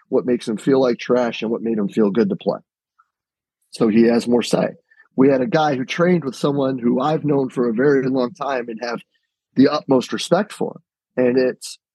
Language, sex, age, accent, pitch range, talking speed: English, male, 30-49, American, 130-180 Hz, 220 wpm